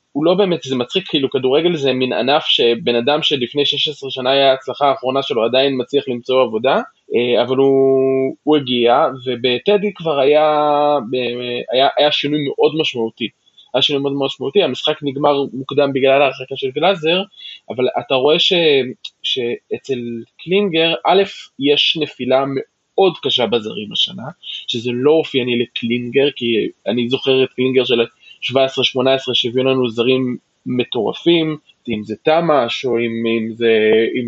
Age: 20-39